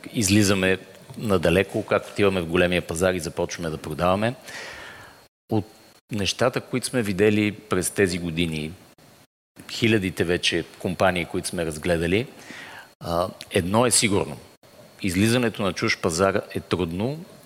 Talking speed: 115 wpm